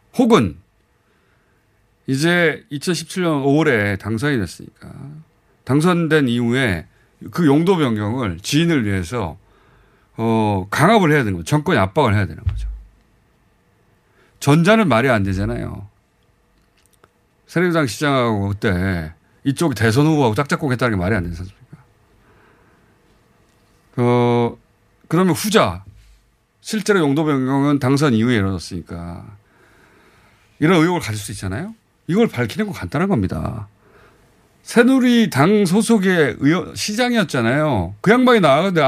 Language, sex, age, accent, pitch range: Korean, male, 40-59, native, 100-165 Hz